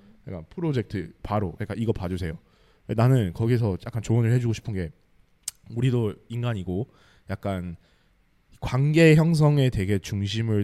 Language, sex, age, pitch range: Korean, male, 20-39, 95-140 Hz